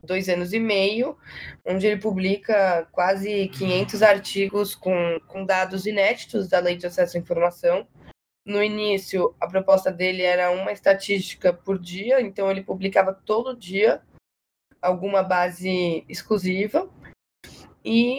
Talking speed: 130 wpm